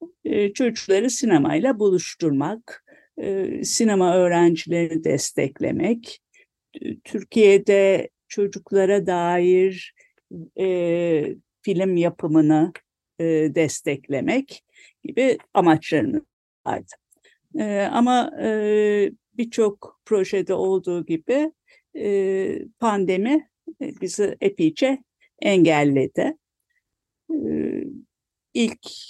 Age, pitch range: 50-69, 175-285 Hz